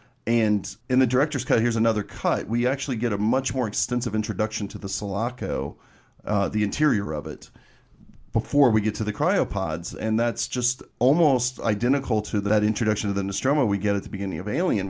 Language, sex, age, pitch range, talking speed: English, male, 40-59, 100-115 Hz, 195 wpm